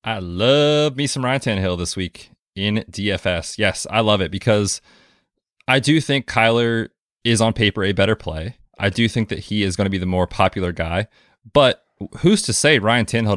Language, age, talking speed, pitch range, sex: English, 20-39, 195 wpm, 95-120 Hz, male